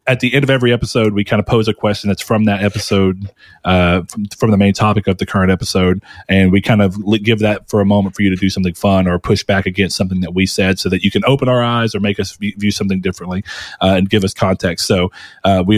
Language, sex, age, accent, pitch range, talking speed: English, male, 30-49, American, 100-120 Hz, 265 wpm